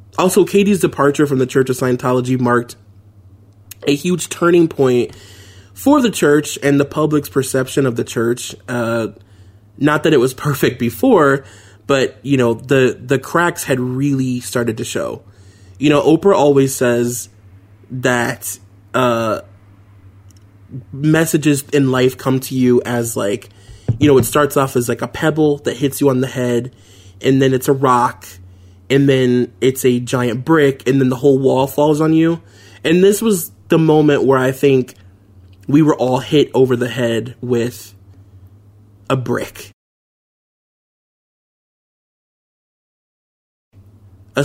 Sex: male